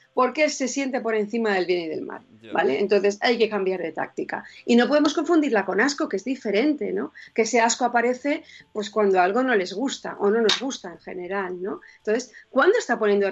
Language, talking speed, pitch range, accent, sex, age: Spanish, 210 wpm, 195-245 Hz, Spanish, female, 40-59